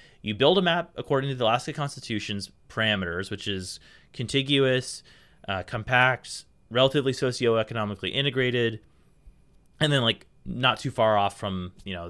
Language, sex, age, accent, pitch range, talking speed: English, male, 30-49, American, 105-140 Hz, 140 wpm